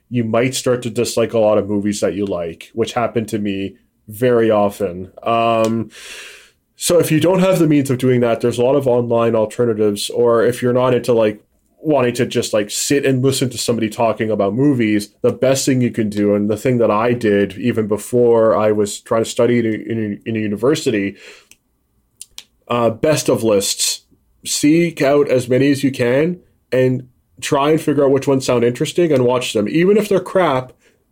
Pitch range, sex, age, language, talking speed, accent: 110-130 Hz, male, 20-39, English, 200 wpm, American